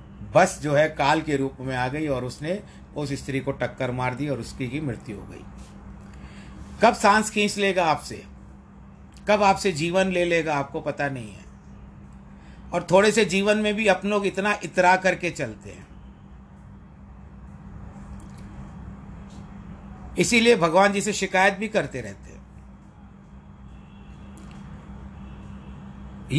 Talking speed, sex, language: 135 wpm, male, Hindi